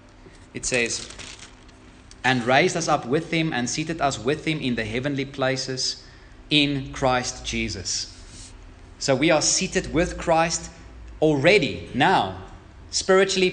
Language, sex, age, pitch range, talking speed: English, male, 30-49, 120-175 Hz, 130 wpm